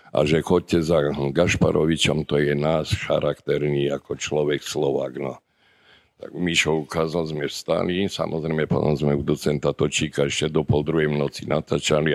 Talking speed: 150 wpm